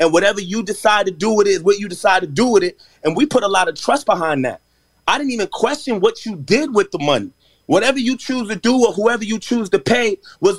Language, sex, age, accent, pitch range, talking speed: English, male, 30-49, American, 200-245 Hz, 265 wpm